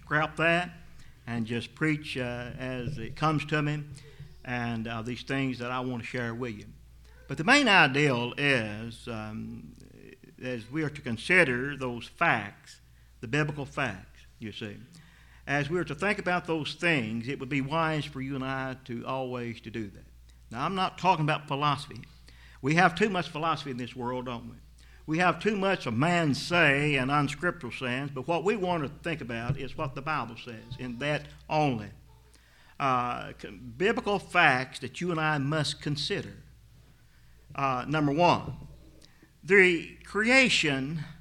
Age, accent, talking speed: 50-69, American, 170 wpm